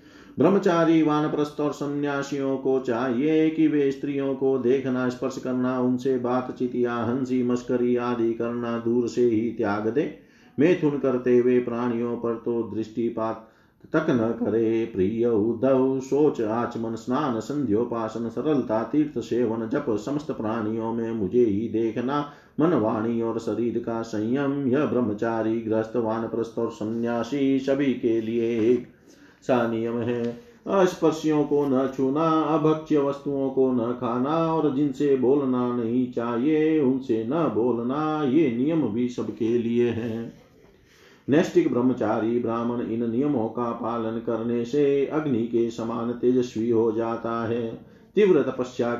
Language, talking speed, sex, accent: Hindi, 130 wpm, male, native